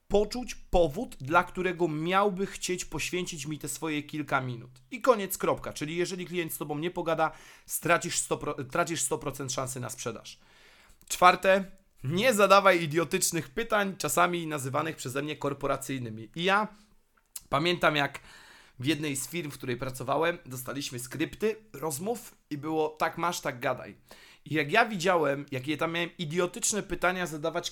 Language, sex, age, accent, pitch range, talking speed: Polish, male, 30-49, native, 145-180 Hz, 145 wpm